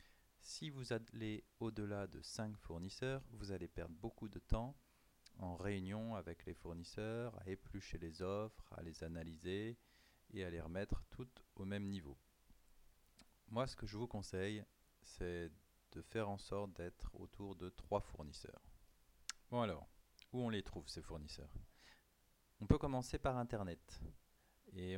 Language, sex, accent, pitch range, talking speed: French, male, French, 85-110 Hz, 150 wpm